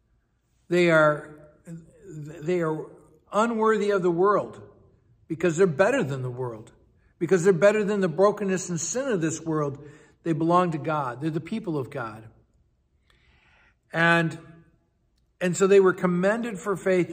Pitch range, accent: 150-185 Hz, American